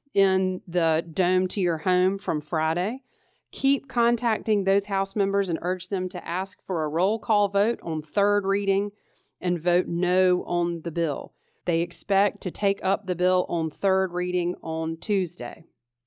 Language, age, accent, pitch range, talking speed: English, 40-59, American, 170-205 Hz, 165 wpm